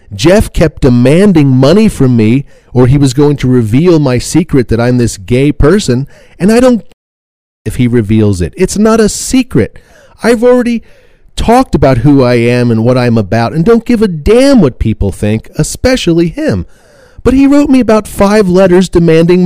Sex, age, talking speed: male, 40-59, 185 wpm